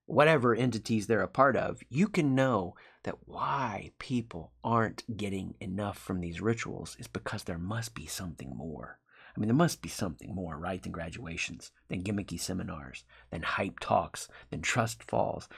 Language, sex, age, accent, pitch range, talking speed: English, male, 30-49, American, 95-120 Hz, 170 wpm